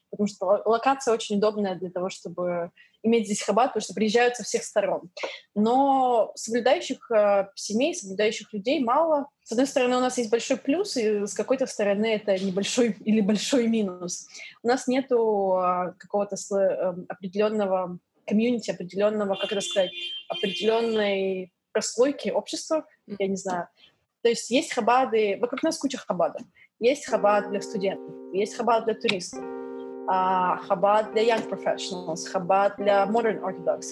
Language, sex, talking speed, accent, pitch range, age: Russian, female, 145 wpm, native, 195-245 Hz, 20-39